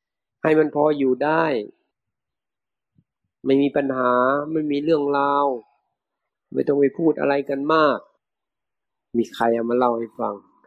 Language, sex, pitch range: Thai, male, 130-165 Hz